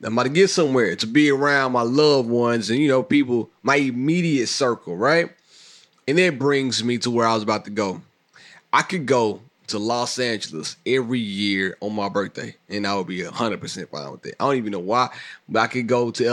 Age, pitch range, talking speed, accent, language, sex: 30-49, 110-150 Hz, 215 wpm, American, English, male